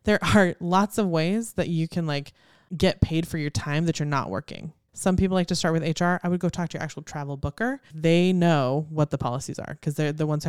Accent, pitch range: American, 150-185 Hz